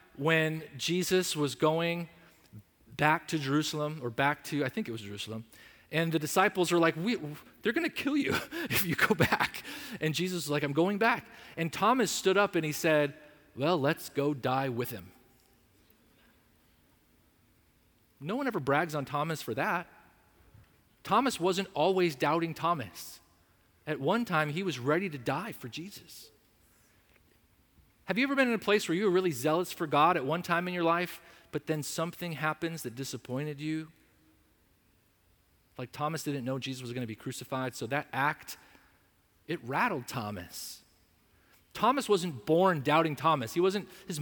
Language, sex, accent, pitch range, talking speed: English, male, American, 130-180 Hz, 170 wpm